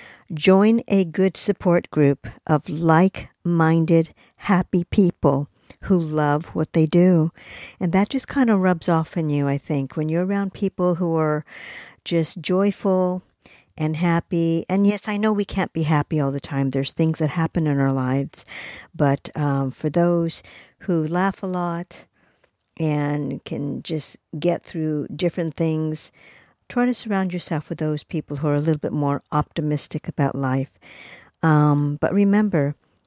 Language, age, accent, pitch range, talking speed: English, 50-69, American, 150-185 Hz, 160 wpm